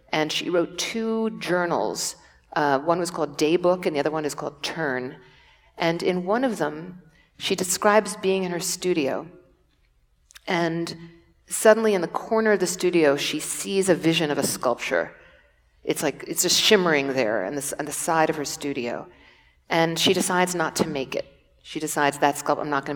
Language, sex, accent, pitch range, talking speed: English, female, American, 150-180 Hz, 190 wpm